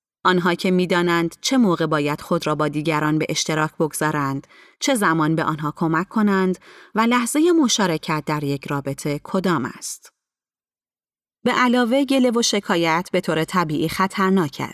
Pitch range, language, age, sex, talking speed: 160-245 Hz, Persian, 30-49, female, 145 wpm